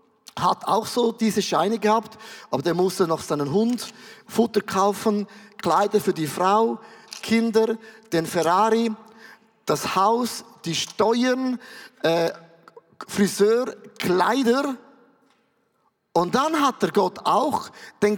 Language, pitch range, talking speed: German, 175-225 Hz, 115 wpm